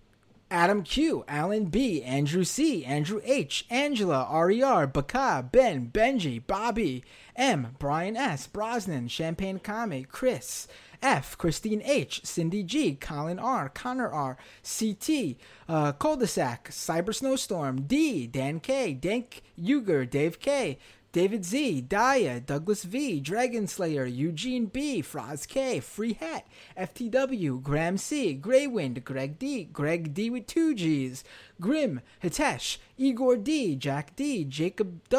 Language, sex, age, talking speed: English, male, 30-49, 125 wpm